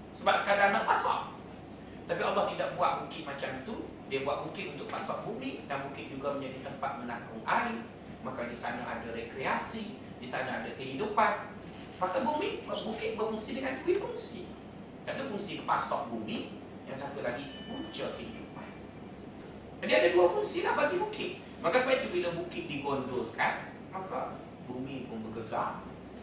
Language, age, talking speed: Malay, 40-59, 150 wpm